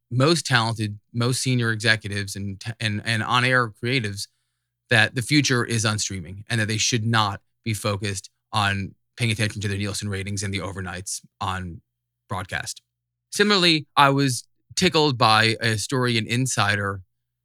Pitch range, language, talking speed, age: 105-120 Hz, English, 150 wpm, 20-39